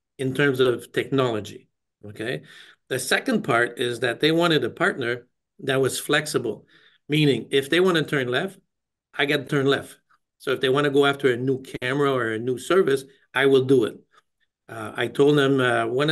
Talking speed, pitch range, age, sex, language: 195 wpm, 125-150 Hz, 50-69, male, English